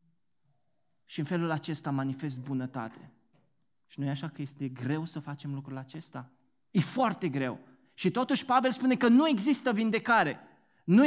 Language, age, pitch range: Romanian, 20-39, 135-220 Hz